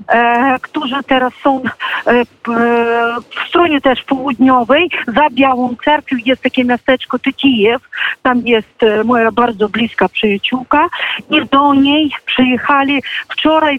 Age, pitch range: 50-69, 245-300 Hz